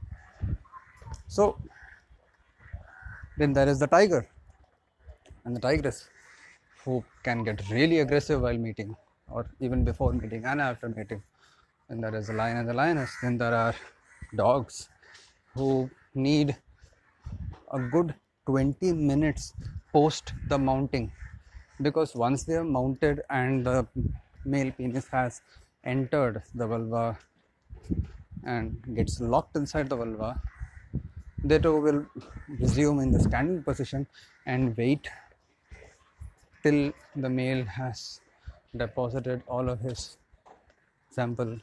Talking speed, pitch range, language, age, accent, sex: 120 wpm, 110-135 Hz, English, 30-49, Indian, male